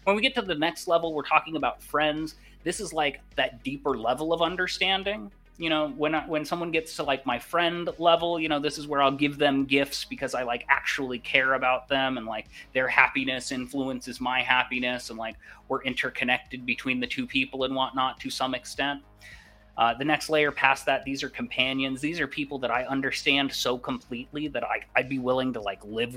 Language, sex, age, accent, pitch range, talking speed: English, male, 30-49, American, 125-150 Hz, 210 wpm